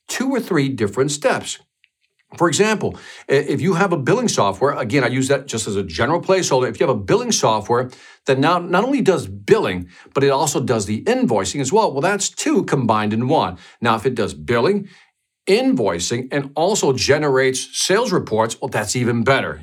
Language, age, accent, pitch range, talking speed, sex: English, 50-69, American, 130-185 Hz, 195 wpm, male